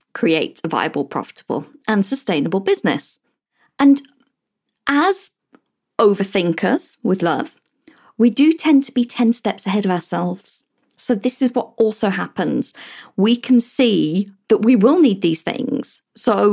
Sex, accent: female, British